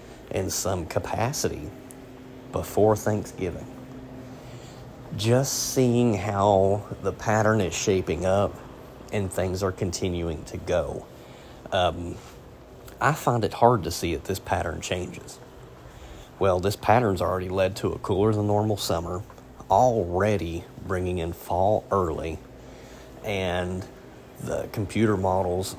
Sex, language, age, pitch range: male, English, 30-49, 85-110 Hz